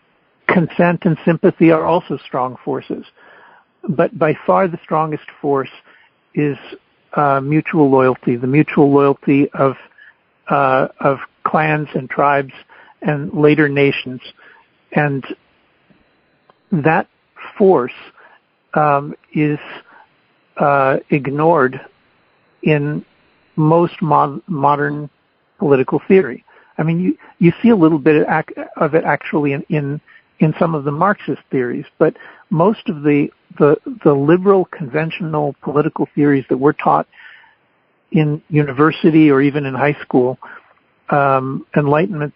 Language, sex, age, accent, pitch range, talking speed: English, male, 60-79, American, 140-165 Hz, 120 wpm